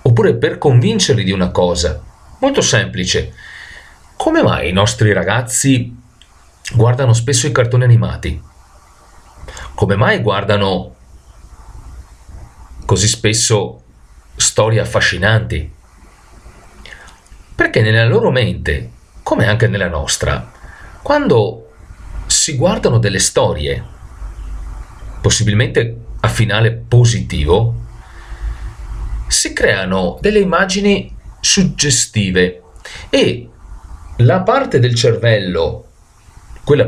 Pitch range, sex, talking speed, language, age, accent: 85-115 Hz, male, 85 wpm, Italian, 40-59, native